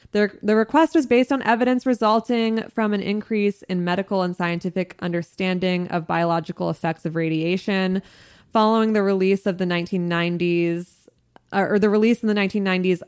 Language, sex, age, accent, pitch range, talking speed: English, female, 20-39, American, 175-215 Hz, 155 wpm